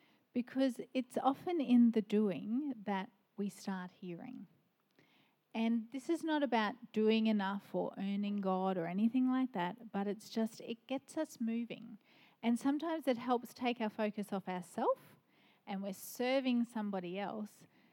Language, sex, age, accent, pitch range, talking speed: English, female, 40-59, Australian, 200-260 Hz, 150 wpm